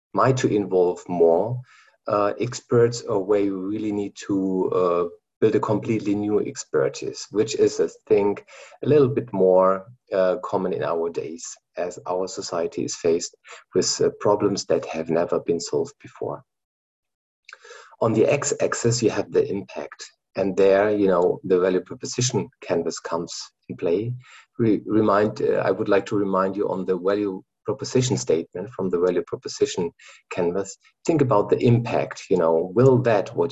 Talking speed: 165 wpm